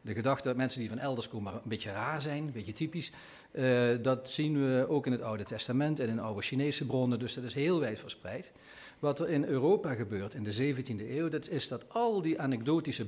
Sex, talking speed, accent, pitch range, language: male, 230 wpm, Dutch, 115-150 Hz, Dutch